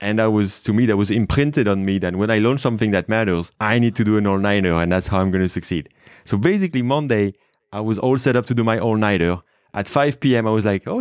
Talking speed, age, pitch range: 265 wpm, 20-39, 95-120 Hz